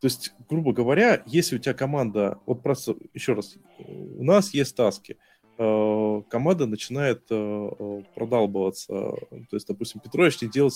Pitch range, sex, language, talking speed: 110-160 Hz, male, Russian, 150 wpm